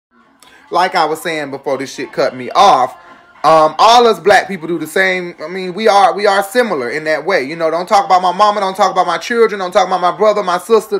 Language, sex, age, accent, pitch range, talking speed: English, male, 30-49, American, 155-200 Hz, 255 wpm